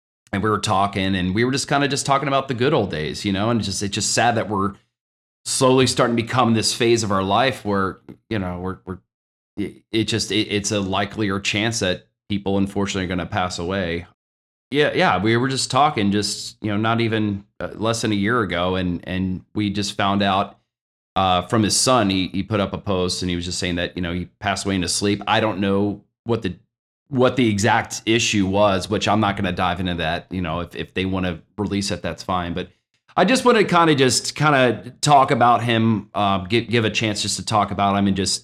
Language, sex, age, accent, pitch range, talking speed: English, male, 30-49, American, 95-120 Hz, 240 wpm